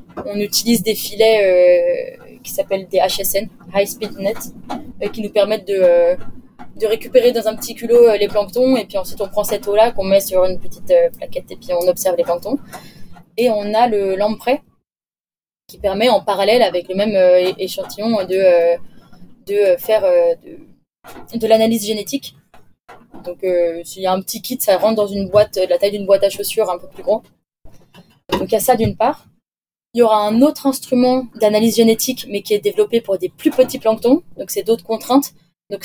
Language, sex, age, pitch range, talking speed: French, female, 20-39, 195-240 Hz, 210 wpm